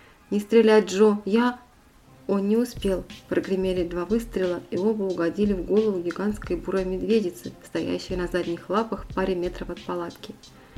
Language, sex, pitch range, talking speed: Russian, female, 180-210 Hz, 145 wpm